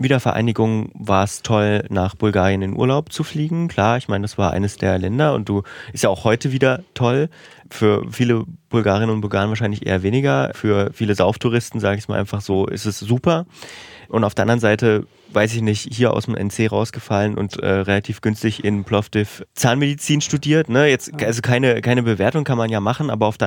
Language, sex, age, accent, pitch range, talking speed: German, male, 30-49, German, 100-120 Hz, 205 wpm